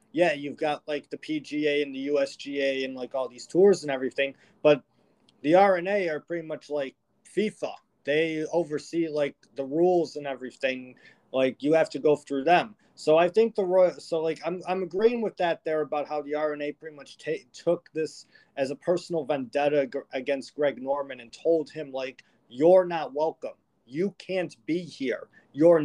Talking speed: 185 wpm